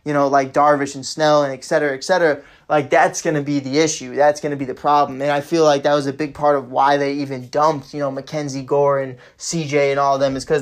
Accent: American